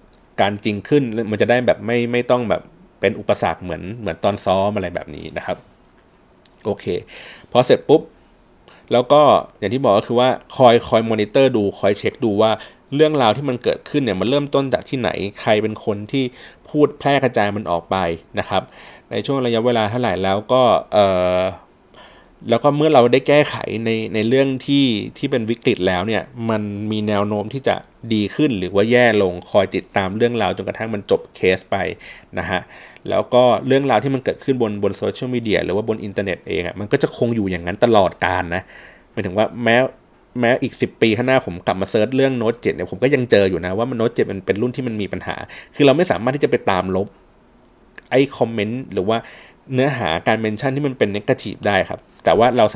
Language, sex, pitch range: Thai, male, 105-130 Hz